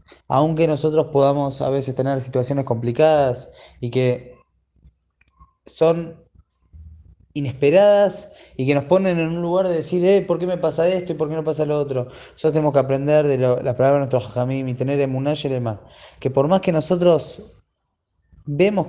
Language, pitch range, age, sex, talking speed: Spanish, 125-155 Hz, 20-39, male, 175 wpm